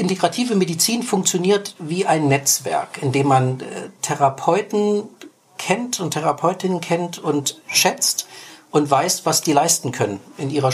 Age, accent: 50-69, German